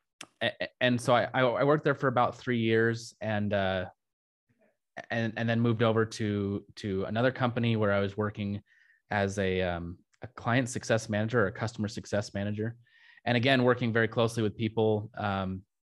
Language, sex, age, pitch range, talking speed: English, male, 20-39, 105-125 Hz, 170 wpm